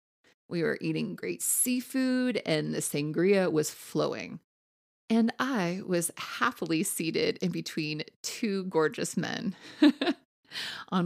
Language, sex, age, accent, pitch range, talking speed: English, female, 30-49, American, 155-230 Hz, 115 wpm